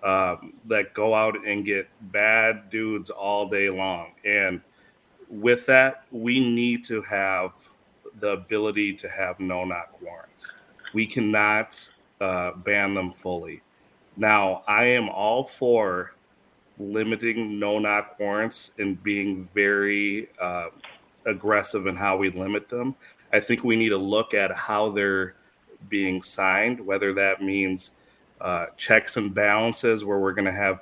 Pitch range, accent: 95-110 Hz, American